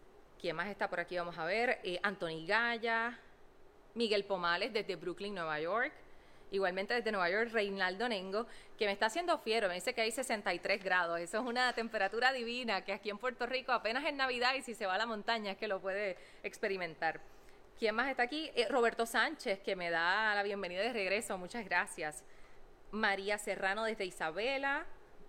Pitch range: 185-235 Hz